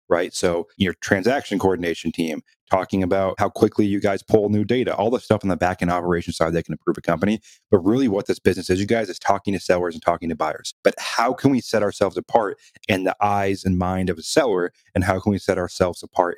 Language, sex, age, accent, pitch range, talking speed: English, male, 30-49, American, 90-110 Hz, 245 wpm